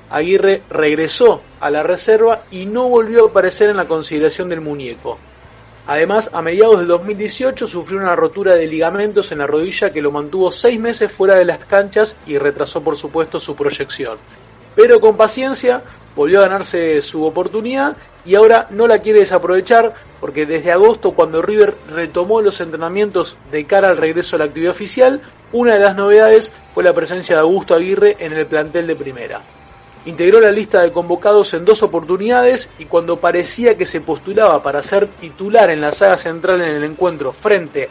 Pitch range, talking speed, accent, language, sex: 160-215 Hz, 180 wpm, Argentinian, Spanish, male